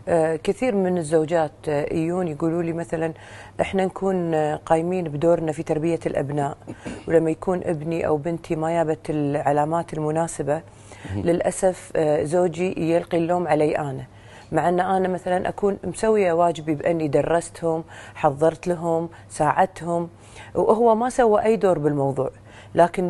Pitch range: 160-215 Hz